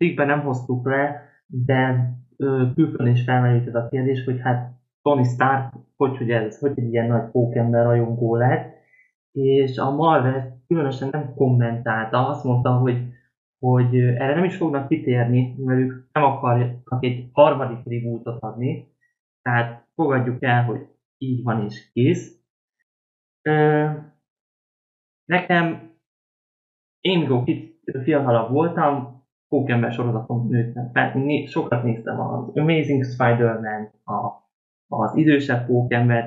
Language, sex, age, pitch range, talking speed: Hungarian, male, 20-39, 120-140 Hz, 120 wpm